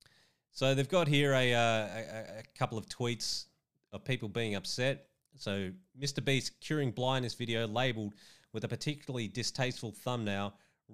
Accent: Australian